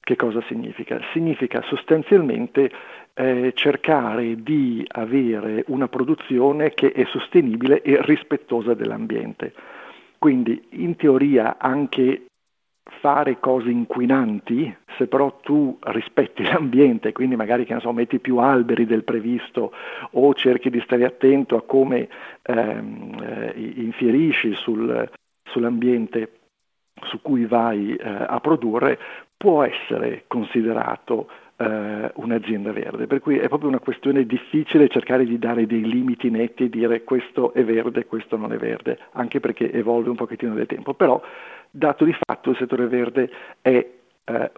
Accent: native